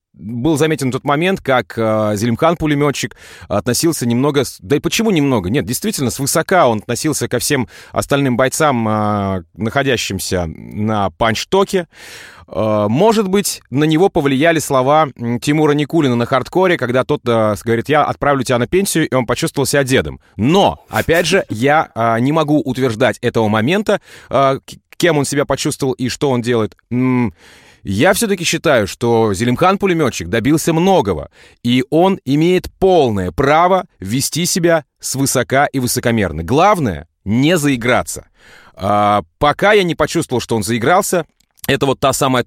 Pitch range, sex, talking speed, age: 115-160 Hz, male, 135 wpm, 30-49